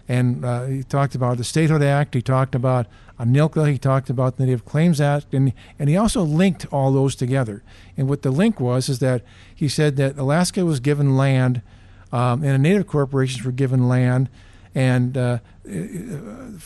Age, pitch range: 50-69, 125-155 Hz